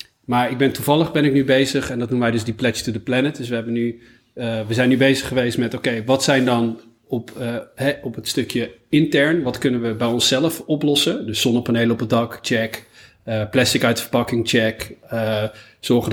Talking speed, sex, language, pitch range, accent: 225 wpm, male, Dutch, 115-135 Hz, Dutch